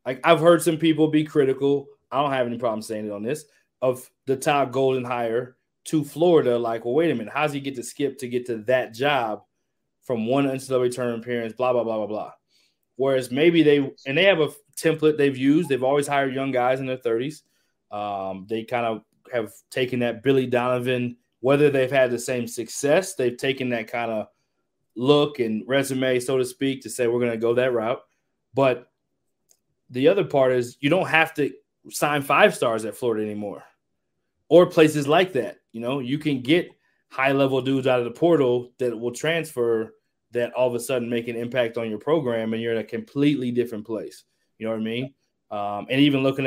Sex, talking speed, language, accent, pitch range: male, 205 wpm, English, American, 120-140 Hz